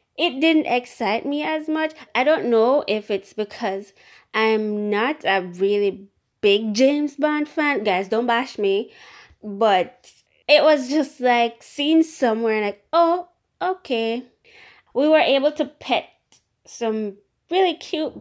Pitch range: 210-310 Hz